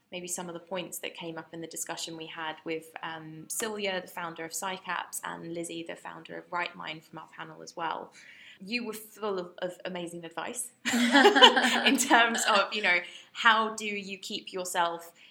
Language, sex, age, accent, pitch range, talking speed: English, female, 20-39, British, 170-200 Hz, 190 wpm